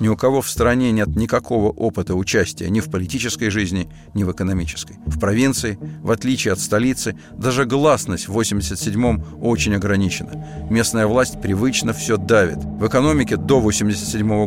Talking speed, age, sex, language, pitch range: 155 wpm, 50-69, male, Russian, 90-120 Hz